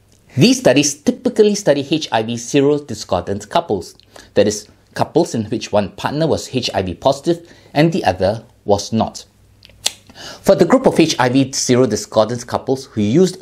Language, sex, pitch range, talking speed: English, male, 105-145 Hz, 150 wpm